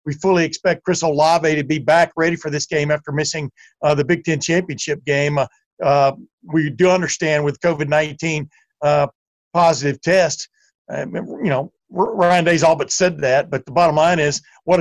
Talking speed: 180 wpm